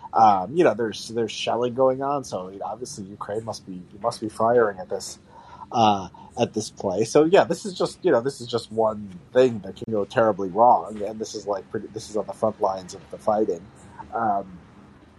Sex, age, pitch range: male, 30-49, 100-130 Hz